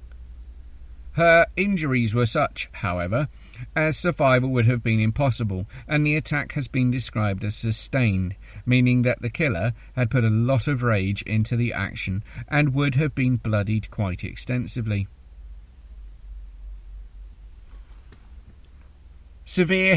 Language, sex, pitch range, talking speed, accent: English, male, 80-130 Hz, 120 wpm, British